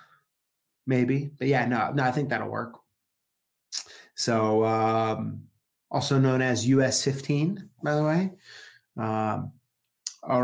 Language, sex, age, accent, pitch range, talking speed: English, male, 30-49, American, 125-185 Hz, 120 wpm